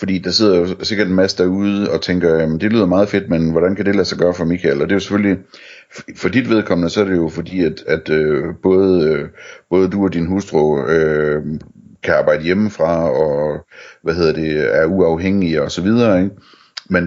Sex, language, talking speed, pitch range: male, Danish, 210 wpm, 80-100 Hz